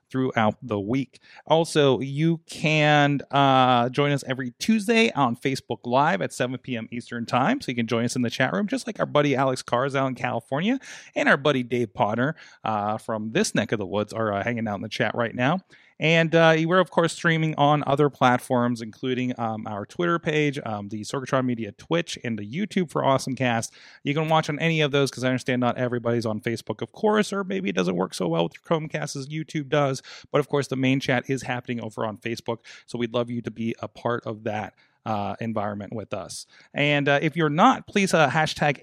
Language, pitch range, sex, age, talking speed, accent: English, 120-155 Hz, male, 30-49, 225 wpm, American